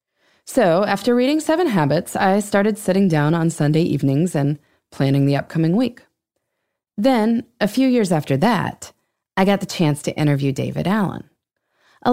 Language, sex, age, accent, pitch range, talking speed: English, female, 20-39, American, 140-200 Hz, 160 wpm